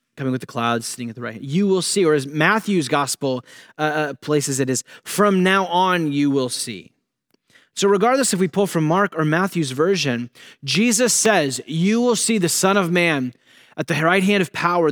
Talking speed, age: 205 wpm, 20-39